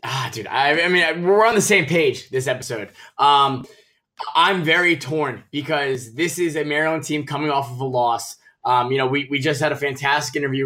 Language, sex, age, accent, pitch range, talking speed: English, male, 20-39, American, 135-170 Hz, 210 wpm